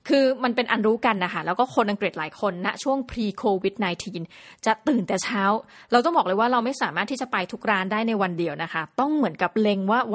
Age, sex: 20-39, female